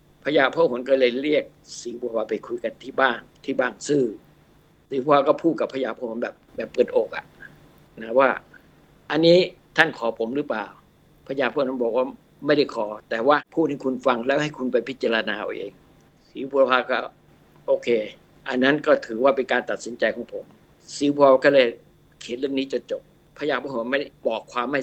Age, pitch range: 60-79, 130-160 Hz